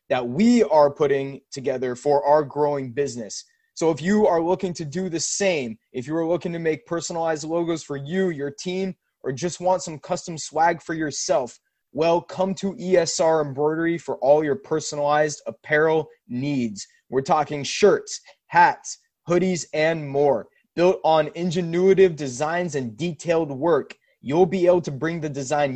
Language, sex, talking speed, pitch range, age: English, male, 165 wpm, 145-180 Hz, 20-39